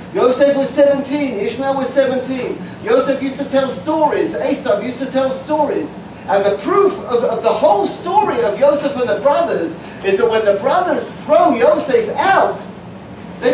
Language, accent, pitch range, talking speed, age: English, British, 245-325 Hz, 170 wpm, 40-59